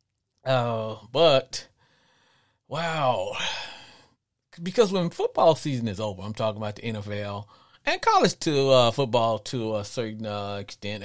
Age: 40-59